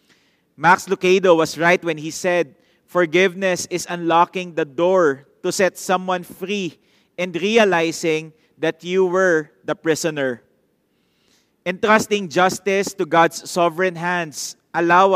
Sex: male